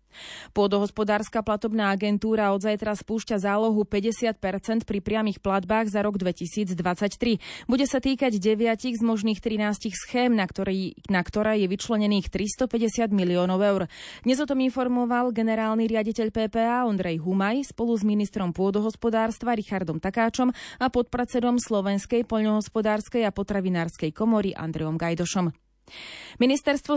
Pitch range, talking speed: 195-230 Hz, 120 wpm